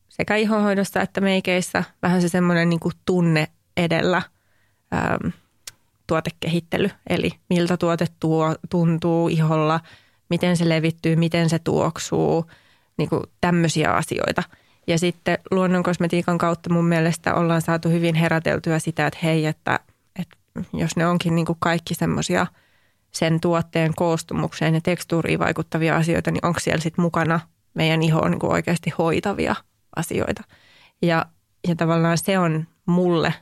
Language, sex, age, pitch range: English, female, 20-39, 160-175 Hz